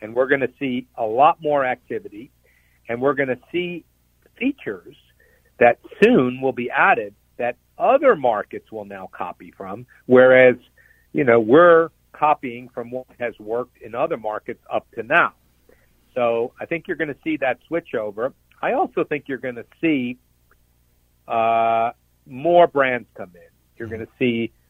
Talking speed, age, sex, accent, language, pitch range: 165 wpm, 60-79, male, American, English, 105-135 Hz